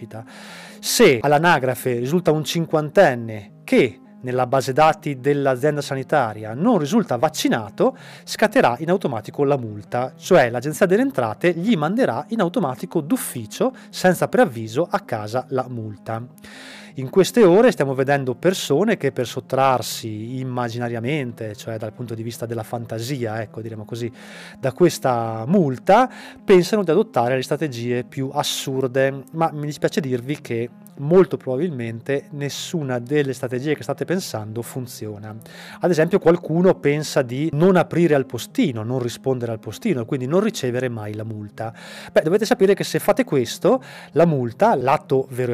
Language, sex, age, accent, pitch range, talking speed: Italian, male, 30-49, native, 125-180 Hz, 140 wpm